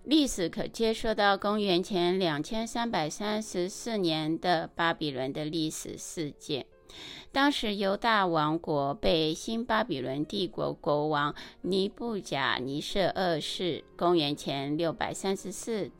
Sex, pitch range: female, 155-225 Hz